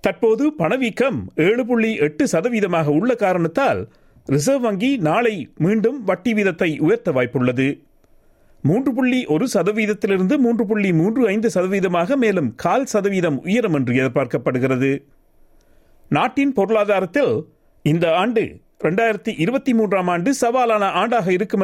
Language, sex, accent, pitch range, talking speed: Tamil, male, native, 150-215 Hz, 100 wpm